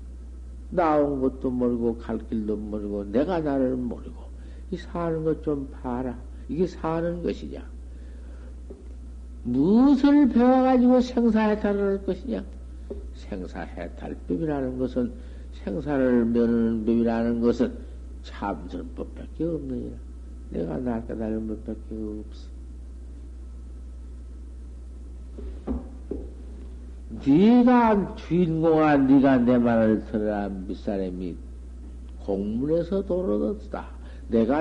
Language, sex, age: Korean, male, 60-79